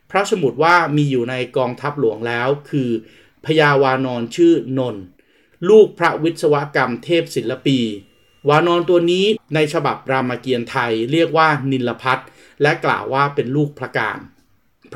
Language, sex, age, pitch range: Thai, male, 30-49, 125-155 Hz